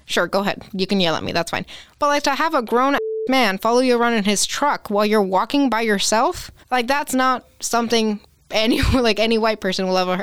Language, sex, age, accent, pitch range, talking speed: English, female, 20-39, American, 185-225 Hz, 235 wpm